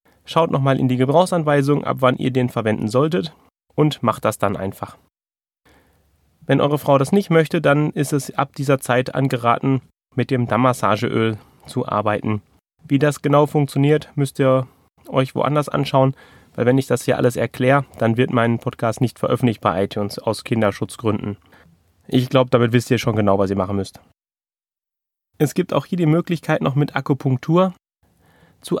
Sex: male